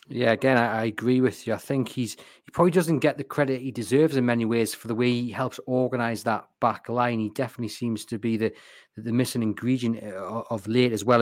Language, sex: English, male